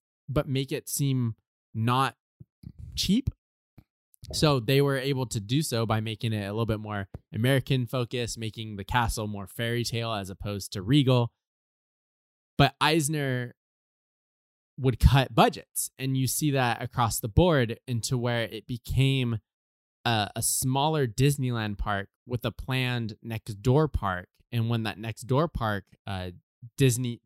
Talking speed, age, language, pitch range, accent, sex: 145 wpm, 20-39, English, 105-135 Hz, American, male